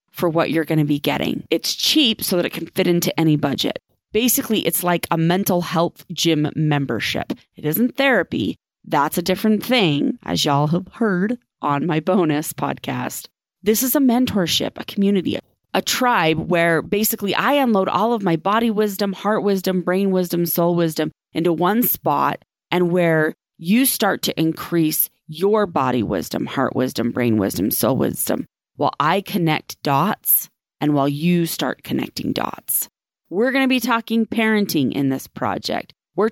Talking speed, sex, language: 165 wpm, female, English